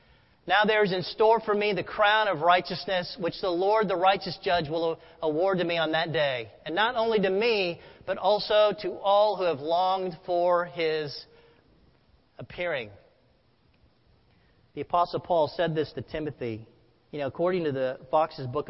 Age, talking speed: 40-59, 170 wpm